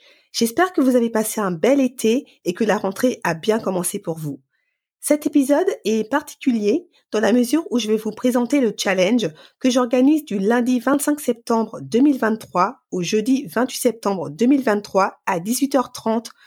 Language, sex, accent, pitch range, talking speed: French, female, French, 210-275 Hz, 165 wpm